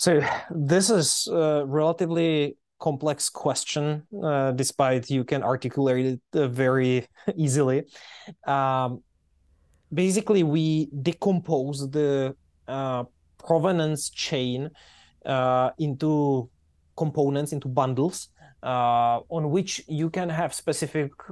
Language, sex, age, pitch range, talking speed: English, male, 20-39, 130-160 Hz, 100 wpm